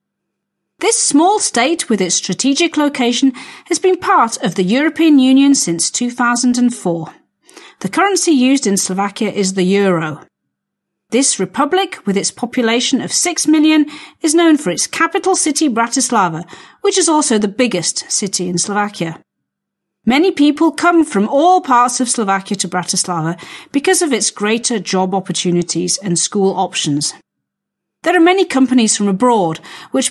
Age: 40-59